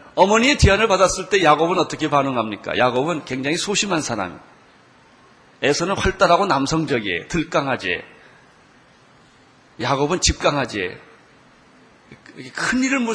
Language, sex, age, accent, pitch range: Korean, male, 40-59, native, 140-170 Hz